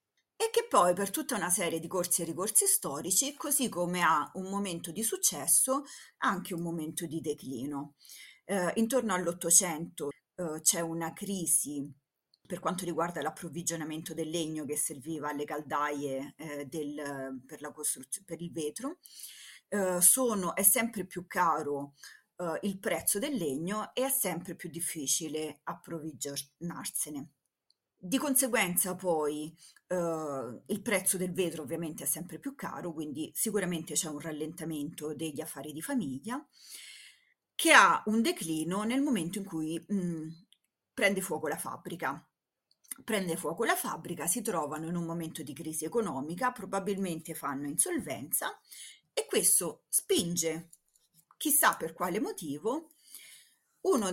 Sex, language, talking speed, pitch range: female, Italian, 135 wpm, 155-210 Hz